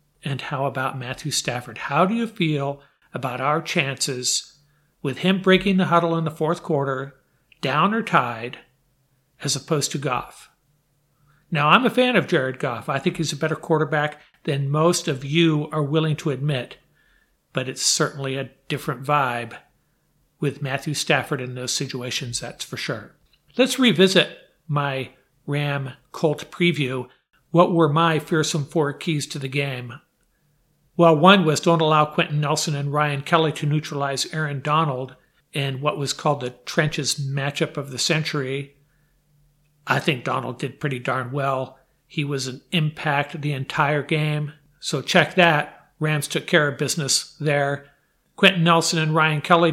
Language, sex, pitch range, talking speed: English, male, 140-160 Hz, 160 wpm